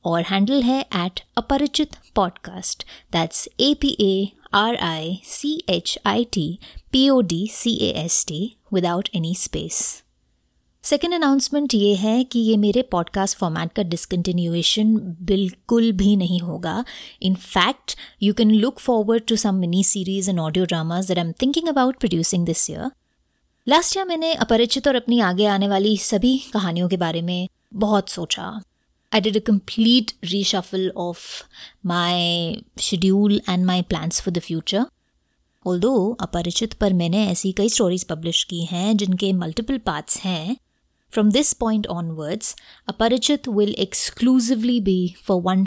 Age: 20-39